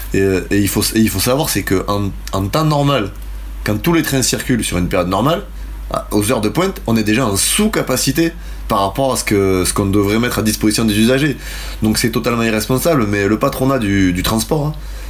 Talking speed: 225 wpm